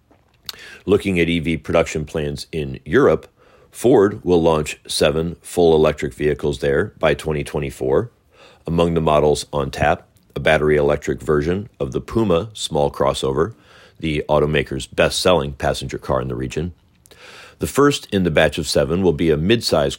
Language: English